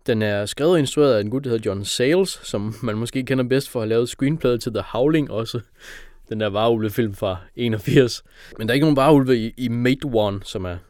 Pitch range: 100-135 Hz